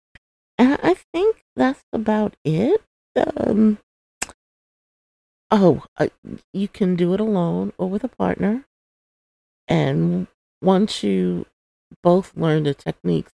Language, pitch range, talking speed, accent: English, 130-195 Hz, 110 wpm, American